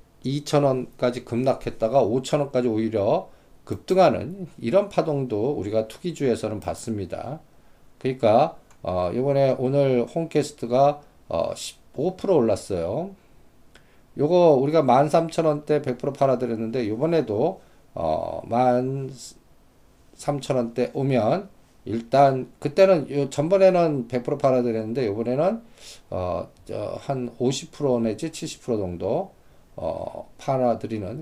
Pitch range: 110-145 Hz